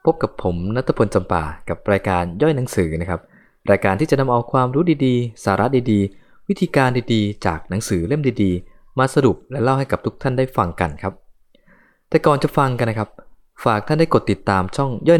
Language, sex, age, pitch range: Thai, male, 20-39, 90-140 Hz